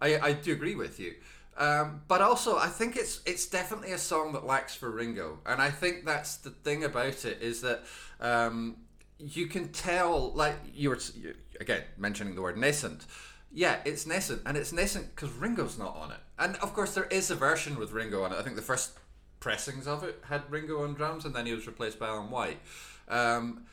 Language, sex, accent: English, male, British